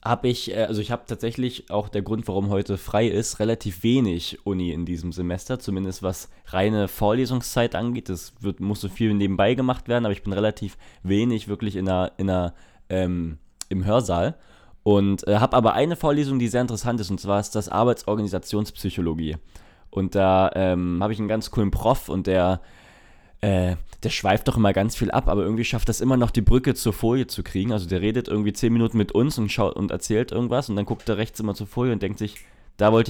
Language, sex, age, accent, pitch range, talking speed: German, male, 20-39, German, 95-115 Hz, 210 wpm